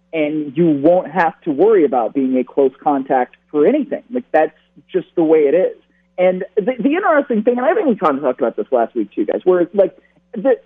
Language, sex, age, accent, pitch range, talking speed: English, male, 40-59, American, 180-280 Hz, 235 wpm